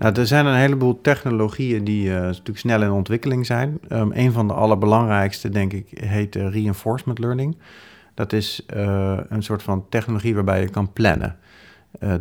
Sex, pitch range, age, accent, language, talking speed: male, 100-115 Hz, 40-59, Dutch, Dutch, 160 wpm